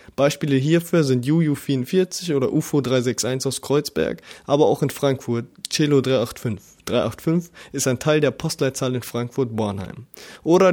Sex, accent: male, German